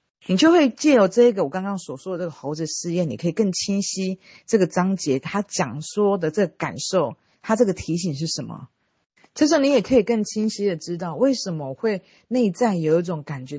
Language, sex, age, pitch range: Chinese, female, 40-59, 150-205 Hz